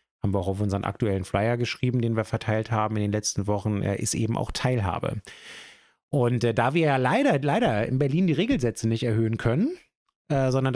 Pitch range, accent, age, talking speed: 110-135 Hz, German, 30-49, 205 wpm